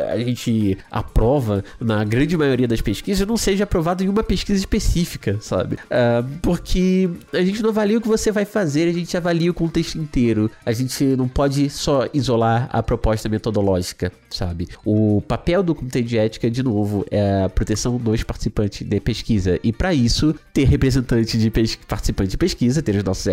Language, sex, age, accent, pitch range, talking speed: Portuguese, male, 20-39, Brazilian, 110-175 Hz, 185 wpm